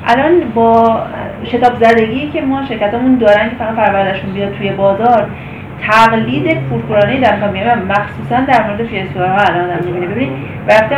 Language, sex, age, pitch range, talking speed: Persian, female, 30-49, 190-235 Hz, 155 wpm